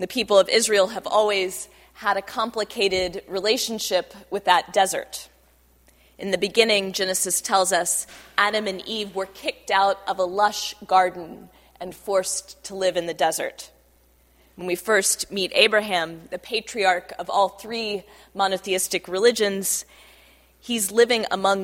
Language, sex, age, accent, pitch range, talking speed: English, female, 20-39, American, 180-210 Hz, 140 wpm